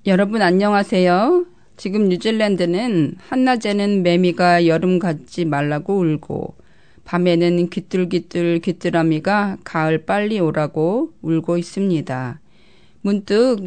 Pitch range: 170-205 Hz